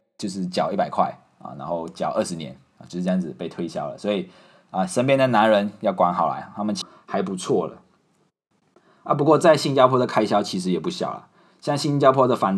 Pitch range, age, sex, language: 95-115 Hz, 20-39, male, Chinese